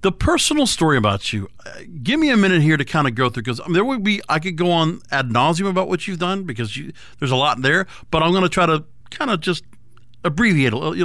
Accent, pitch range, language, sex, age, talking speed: American, 125-170 Hz, English, male, 50-69, 265 wpm